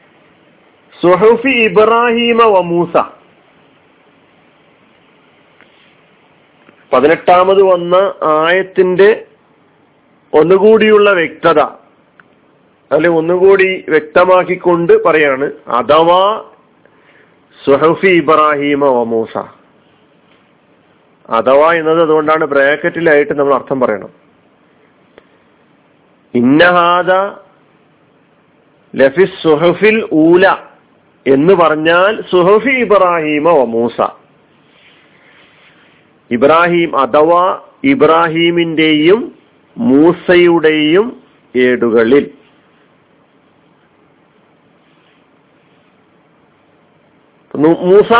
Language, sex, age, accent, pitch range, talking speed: Malayalam, male, 40-59, native, 150-185 Hz, 35 wpm